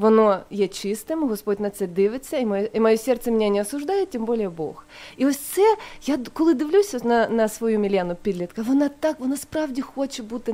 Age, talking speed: 20-39, 200 wpm